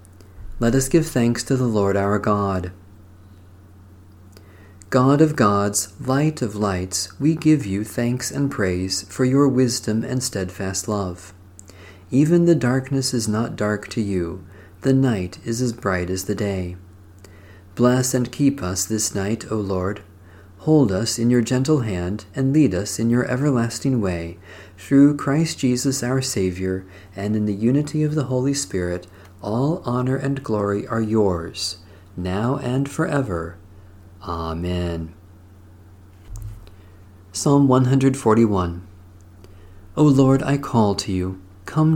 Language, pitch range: English, 95-130 Hz